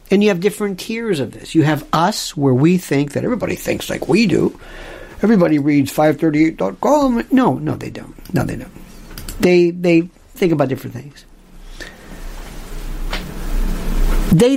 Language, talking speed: English, 150 wpm